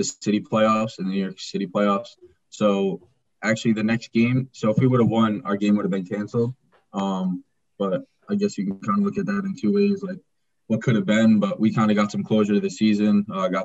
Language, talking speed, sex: English, 255 wpm, male